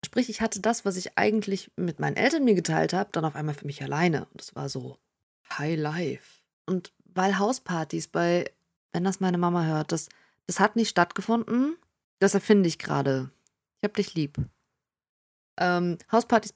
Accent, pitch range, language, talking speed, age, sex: German, 165-215 Hz, German, 180 wpm, 20-39, female